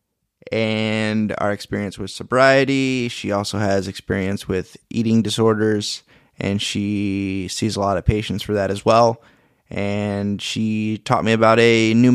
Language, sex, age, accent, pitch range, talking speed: English, male, 20-39, American, 100-115 Hz, 150 wpm